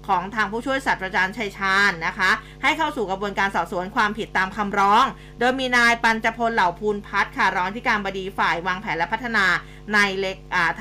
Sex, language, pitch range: female, Thai, 185-235 Hz